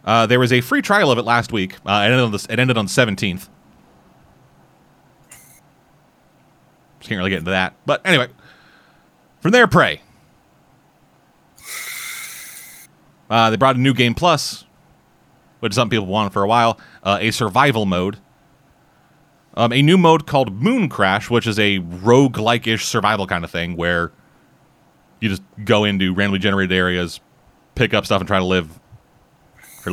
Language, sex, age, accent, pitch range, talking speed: English, male, 30-49, American, 100-135 Hz, 160 wpm